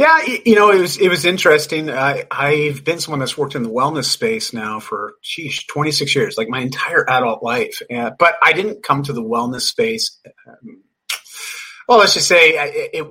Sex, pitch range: male, 130-205 Hz